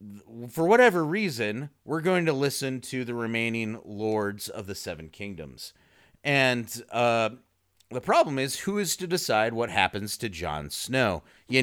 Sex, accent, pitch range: male, American, 95-140 Hz